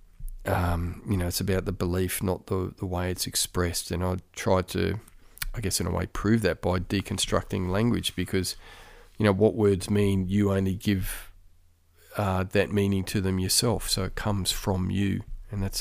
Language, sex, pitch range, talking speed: English, male, 90-100 Hz, 185 wpm